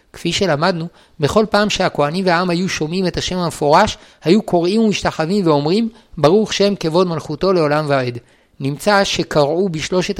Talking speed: 140 wpm